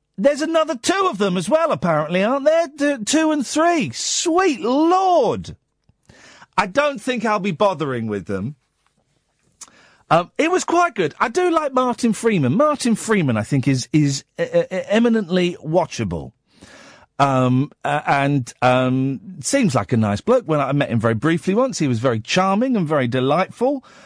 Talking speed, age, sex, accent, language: 165 wpm, 40-59, male, British, English